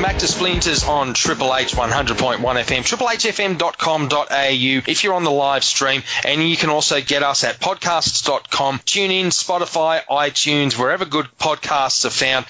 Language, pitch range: English, 135-175 Hz